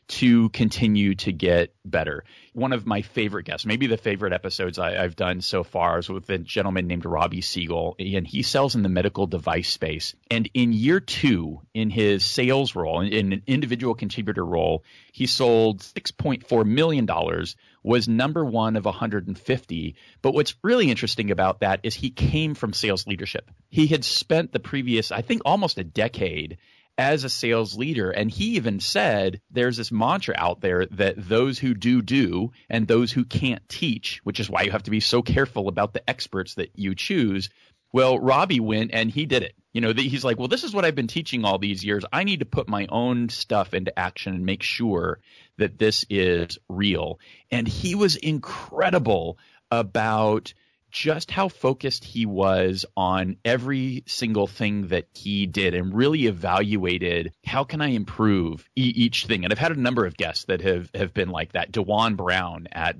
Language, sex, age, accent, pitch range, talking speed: English, male, 30-49, American, 95-125 Hz, 185 wpm